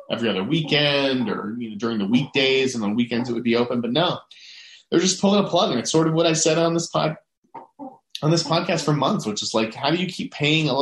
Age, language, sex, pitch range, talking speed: 30-49, English, male, 120-170 Hz, 255 wpm